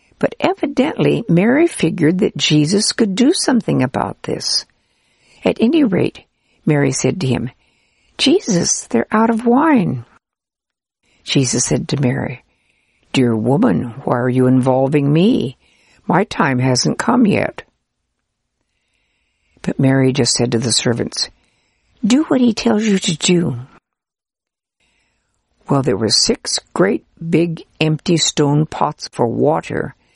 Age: 60-79